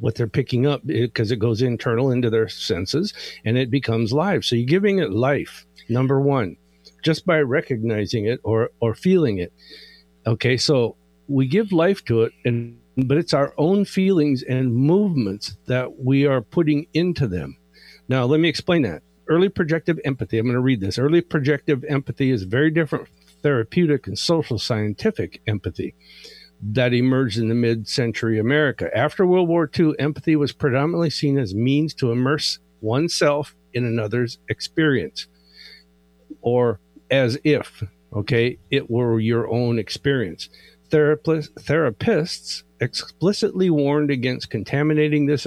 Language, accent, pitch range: English, American, 115-150 Hz